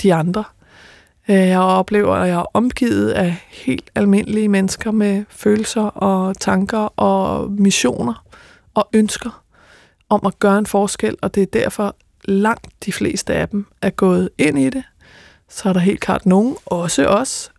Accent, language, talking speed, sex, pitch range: native, Danish, 165 wpm, female, 190-220 Hz